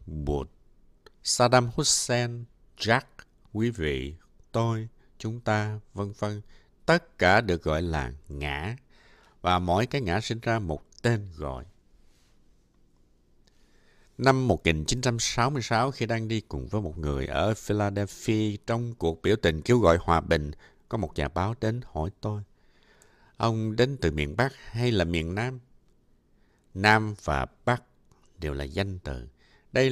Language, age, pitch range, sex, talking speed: Vietnamese, 60-79, 85-115 Hz, male, 140 wpm